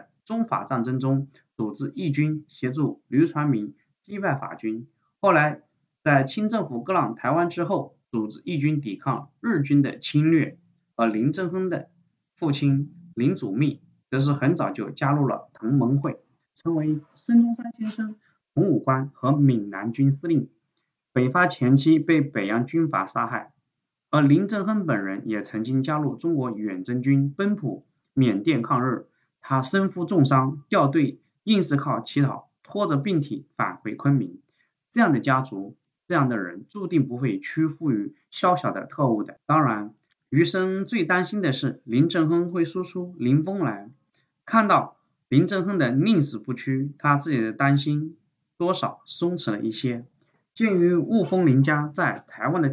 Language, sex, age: Chinese, male, 20-39